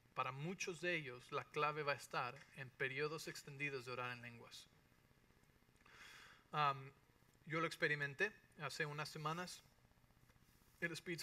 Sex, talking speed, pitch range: male, 135 wpm, 135-170 Hz